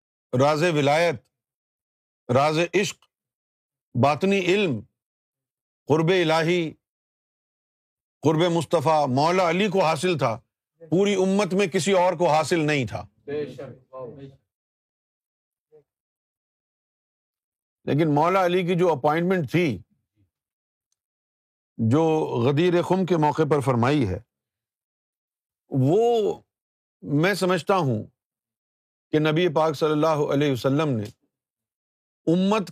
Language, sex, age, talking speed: Urdu, male, 50-69, 95 wpm